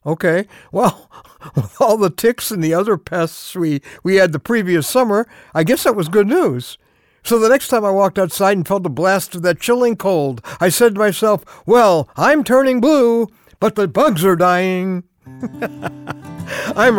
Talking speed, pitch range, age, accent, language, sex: 180 wpm, 125-185 Hz, 60-79, American, English, male